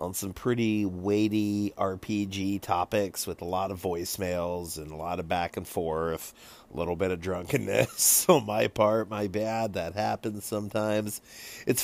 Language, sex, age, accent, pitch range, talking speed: English, male, 30-49, American, 100-120 Hz, 160 wpm